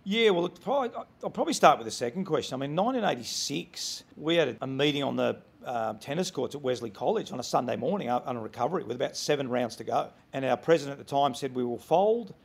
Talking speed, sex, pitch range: 235 wpm, male, 135-165 Hz